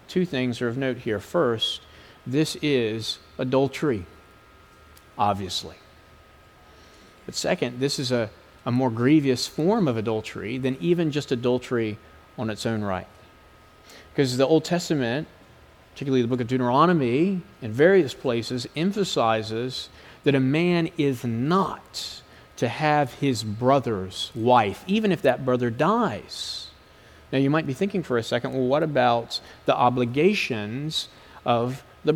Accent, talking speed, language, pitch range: American, 135 wpm, English, 120-150 Hz